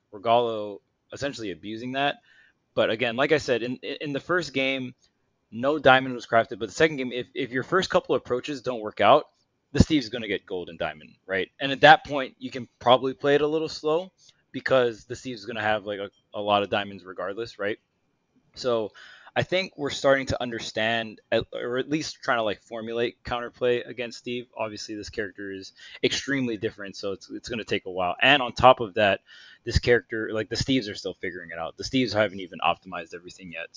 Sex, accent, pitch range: male, American, 115-135 Hz